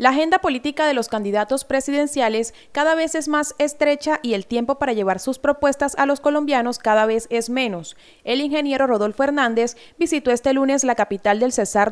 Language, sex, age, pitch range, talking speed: Spanish, female, 30-49, 225-275 Hz, 185 wpm